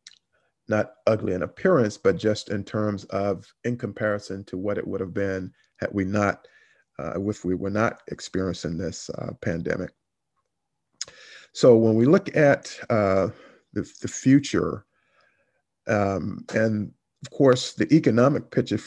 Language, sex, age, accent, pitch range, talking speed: English, male, 50-69, American, 100-110 Hz, 145 wpm